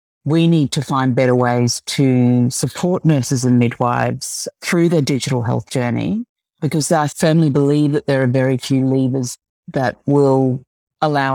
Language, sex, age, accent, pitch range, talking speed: English, female, 50-69, Australian, 120-145 Hz, 155 wpm